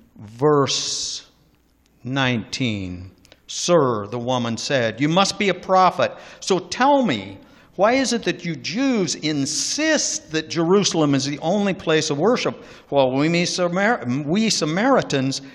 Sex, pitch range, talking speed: male, 130-180 Hz, 130 wpm